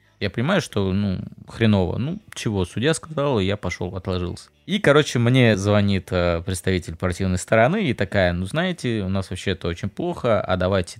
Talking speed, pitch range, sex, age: 165 wpm, 95-130 Hz, male, 20-39